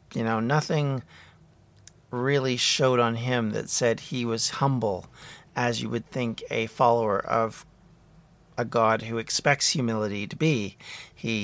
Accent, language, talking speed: American, English, 140 wpm